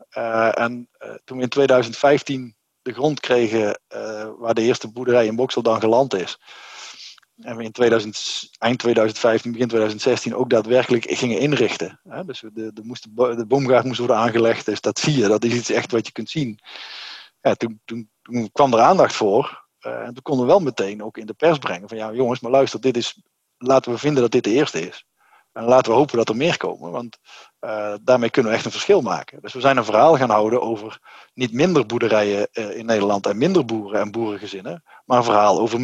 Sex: male